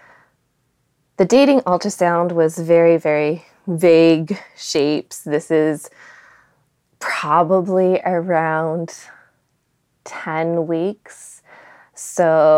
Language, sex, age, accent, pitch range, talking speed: English, female, 20-39, American, 155-175 Hz, 70 wpm